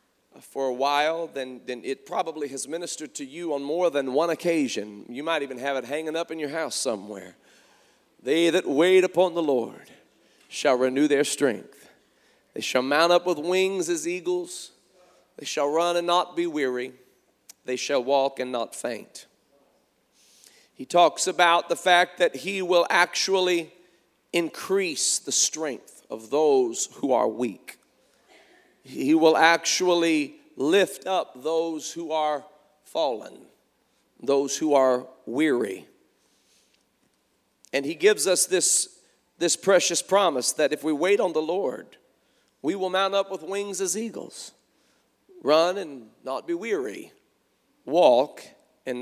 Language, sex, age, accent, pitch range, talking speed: English, male, 40-59, American, 150-200 Hz, 145 wpm